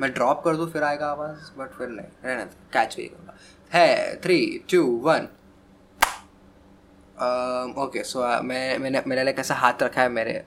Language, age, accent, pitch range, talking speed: Hindi, 20-39, native, 100-135 Hz, 165 wpm